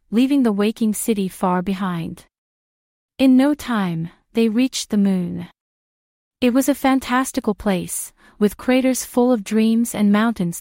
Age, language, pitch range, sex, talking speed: 30-49, English, 195-245 Hz, female, 140 wpm